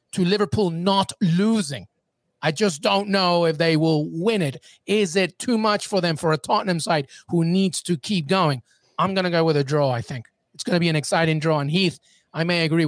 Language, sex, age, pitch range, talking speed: English, male, 30-49, 160-200 Hz, 230 wpm